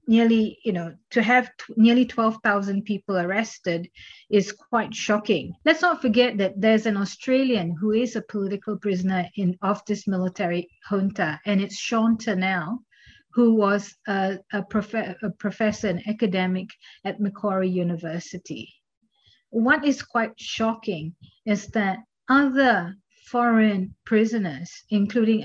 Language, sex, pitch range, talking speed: English, female, 190-230 Hz, 130 wpm